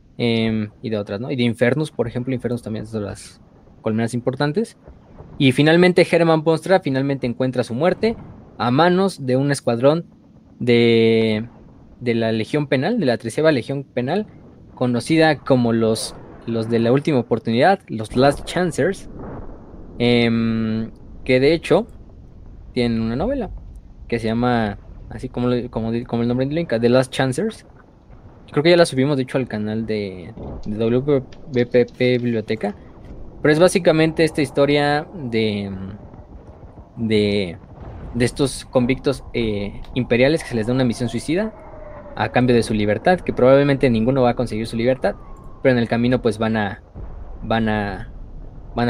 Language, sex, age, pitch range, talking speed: Spanish, male, 20-39, 110-140 Hz, 155 wpm